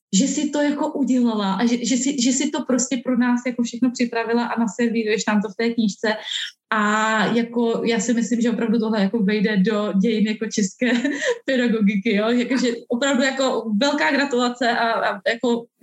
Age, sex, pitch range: 20-39, female, 210-240 Hz